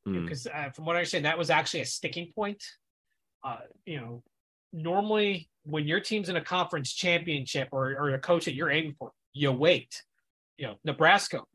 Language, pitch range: English, 150-180 Hz